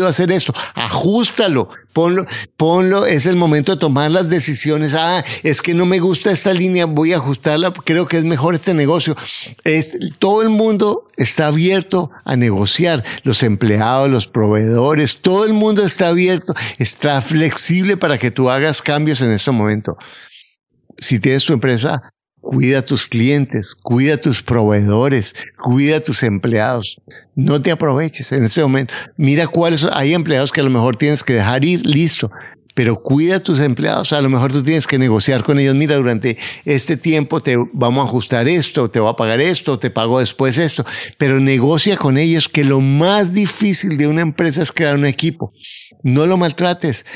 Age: 50-69